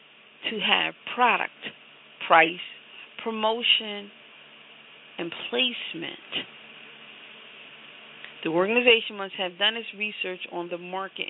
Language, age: English, 40-59